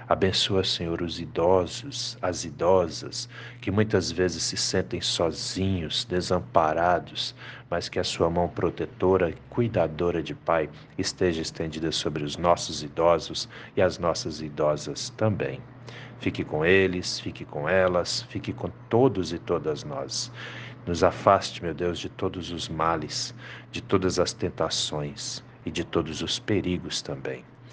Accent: Brazilian